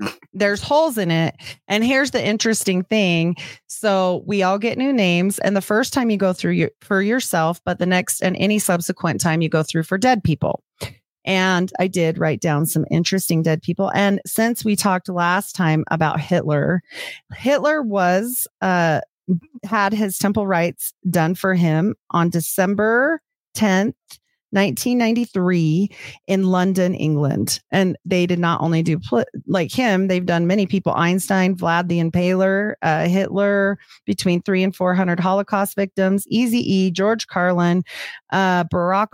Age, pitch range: 30-49, 175-210 Hz